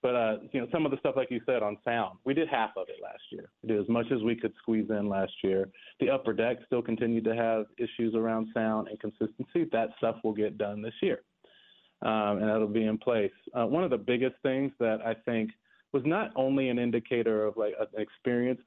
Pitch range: 110-130 Hz